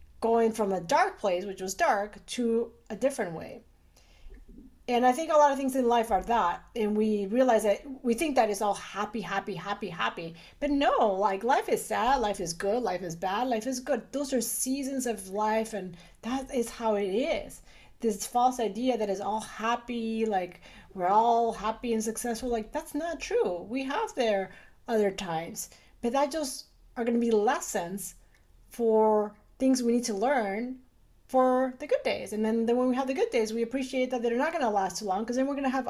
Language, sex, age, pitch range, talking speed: English, female, 40-59, 200-255 Hz, 210 wpm